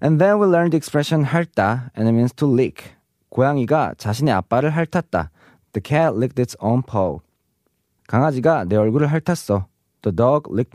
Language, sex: Korean, male